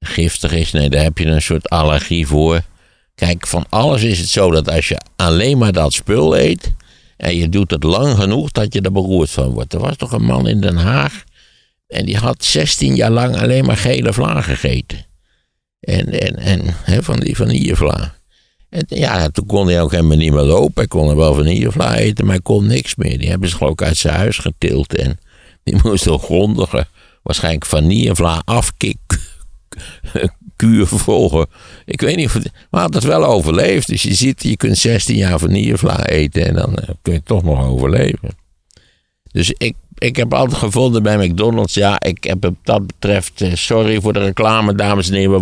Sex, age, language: male, 60-79, Dutch